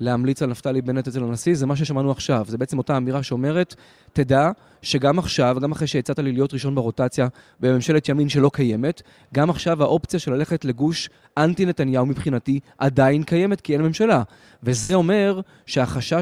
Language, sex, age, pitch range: Hebrew, male, 20-39, 130-160 Hz